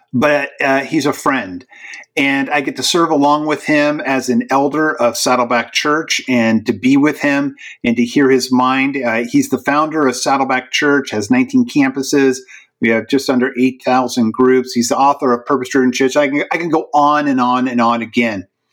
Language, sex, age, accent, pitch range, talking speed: English, male, 50-69, American, 130-165 Hz, 200 wpm